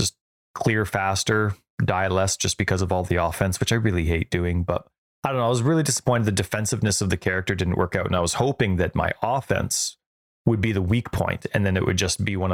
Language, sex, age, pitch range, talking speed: English, male, 30-49, 90-110 Hz, 240 wpm